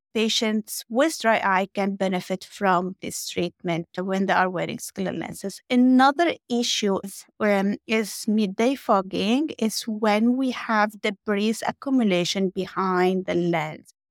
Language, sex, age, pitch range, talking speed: English, female, 30-49, 195-245 Hz, 130 wpm